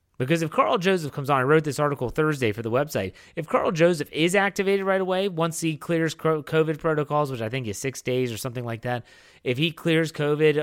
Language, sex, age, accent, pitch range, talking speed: English, male, 30-49, American, 120-160 Hz, 225 wpm